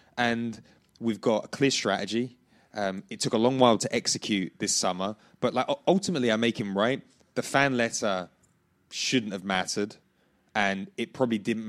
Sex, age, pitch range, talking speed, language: male, 20-39, 100-120 Hz, 170 wpm, English